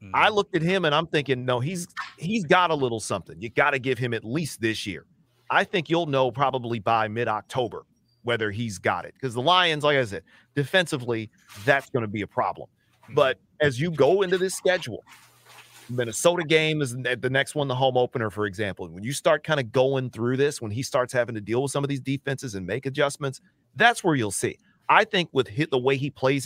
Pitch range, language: 120-155 Hz, English